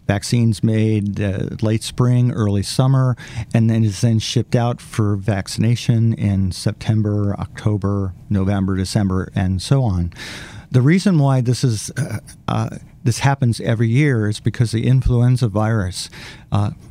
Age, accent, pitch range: 50-69, American, 105-130 Hz